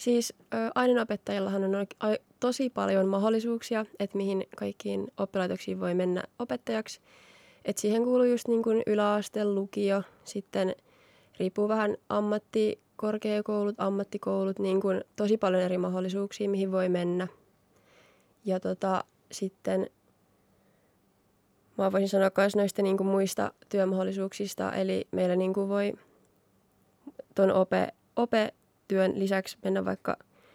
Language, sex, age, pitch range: Finnish, female, 20-39, 190-215 Hz